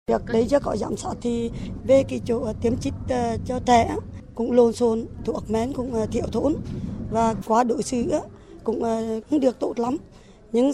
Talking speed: 175 wpm